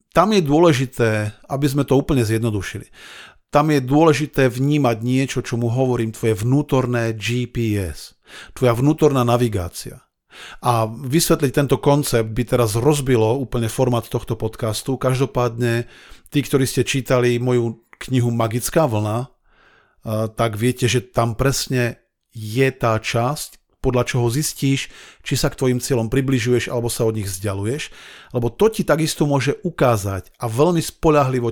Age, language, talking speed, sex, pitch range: 50-69, Slovak, 140 wpm, male, 115-140 Hz